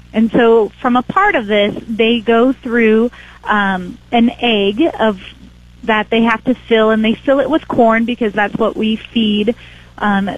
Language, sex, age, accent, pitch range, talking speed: English, female, 30-49, American, 195-235 Hz, 180 wpm